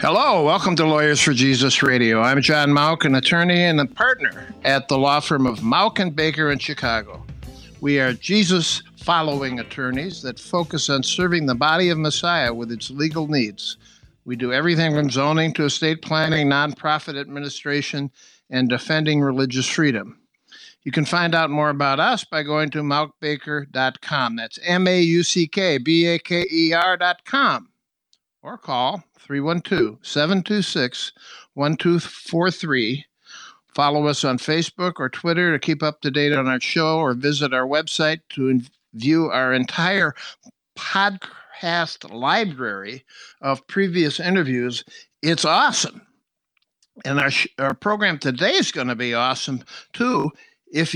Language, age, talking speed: English, 60-79, 130 wpm